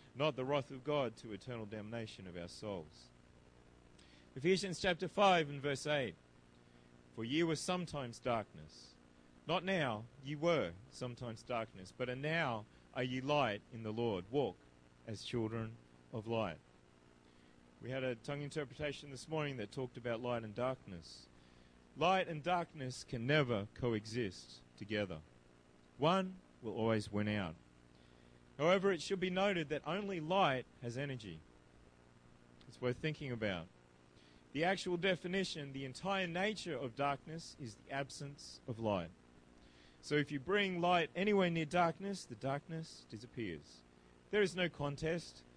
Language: English